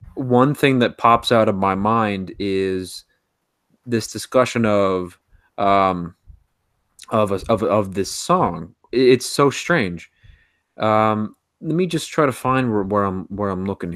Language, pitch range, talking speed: English, 95-130 Hz, 150 wpm